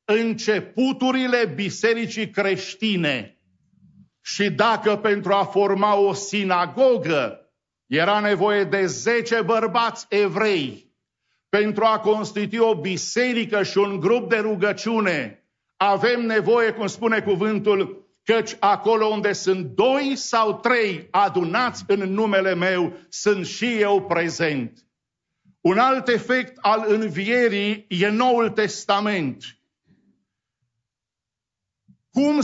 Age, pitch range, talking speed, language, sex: 50-69, 195-230 Hz, 100 wpm, English, male